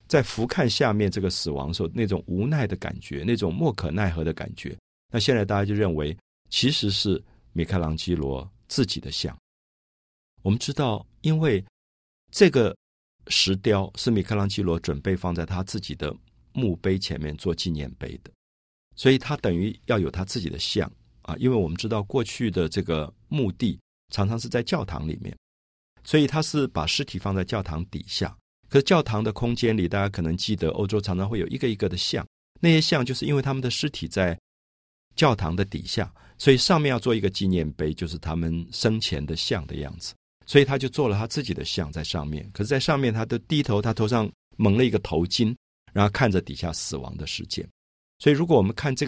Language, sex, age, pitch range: Chinese, male, 50-69, 85-120 Hz